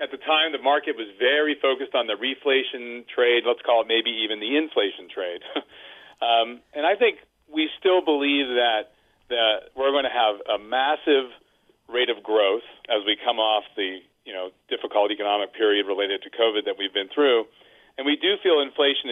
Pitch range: 120-195 Hz